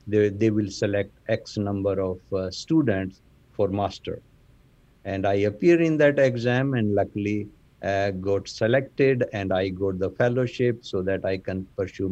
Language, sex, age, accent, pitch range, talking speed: English, male, 60-79, Indian, 100-120 Hz, 160 wpm